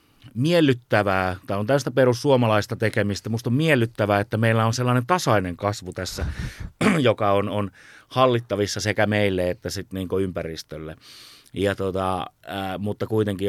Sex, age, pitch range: male, 30-49, 95-110 Hz